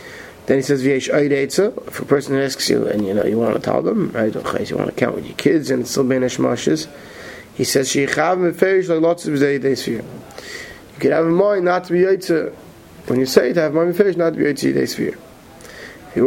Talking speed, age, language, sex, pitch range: 240 wpm, 30-49, English, male, 135-170 Hz